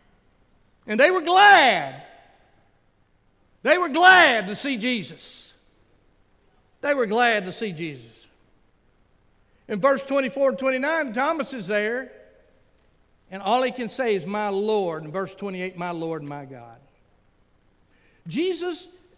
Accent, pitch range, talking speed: American, 205-275 Hz, 130 wpm